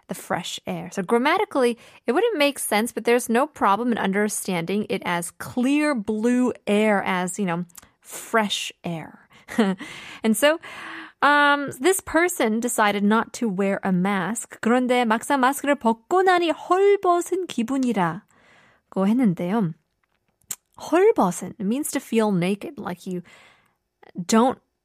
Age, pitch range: 20-39, 195-280 Hz